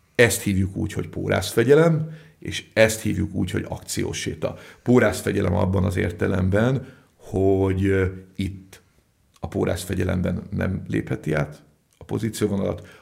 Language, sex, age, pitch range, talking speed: Hungarian, male, 50-69, 95-110 Hz, 115 wpm